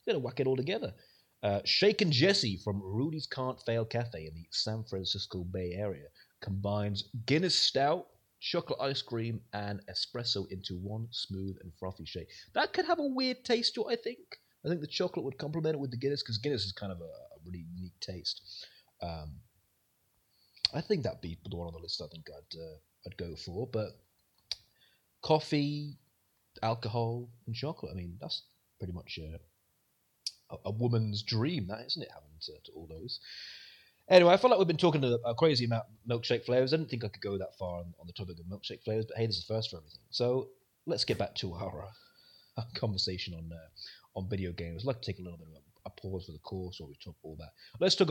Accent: British